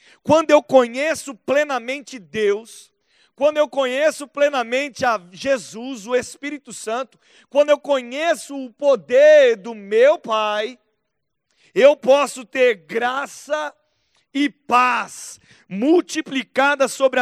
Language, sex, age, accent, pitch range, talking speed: Portuguese, male, 40-59, Brazilian, 220-280 Hz, 105 wpm